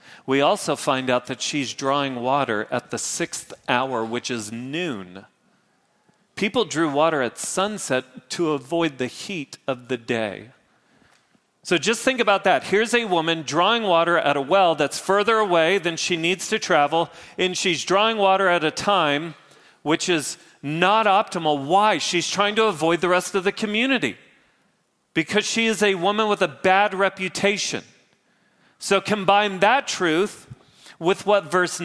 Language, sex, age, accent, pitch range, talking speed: English, male, 40-59, American, 150-205 Hz, 160 wpm